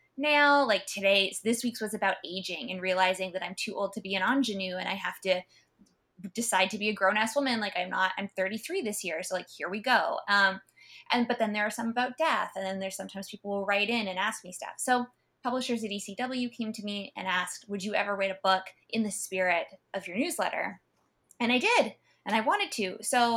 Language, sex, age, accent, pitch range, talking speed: English, female, 20-39, American, 195-245 Hz, 230 wpm